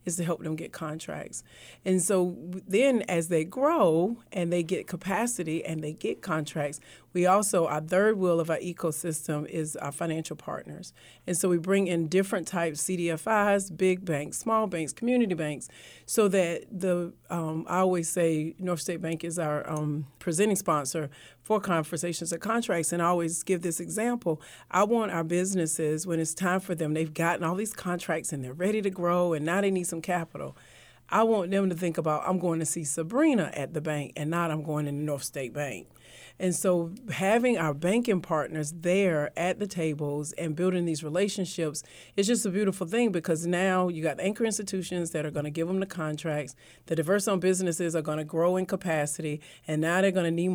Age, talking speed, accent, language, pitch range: 40-59, 200 wpm, American, English, 160-190 Hz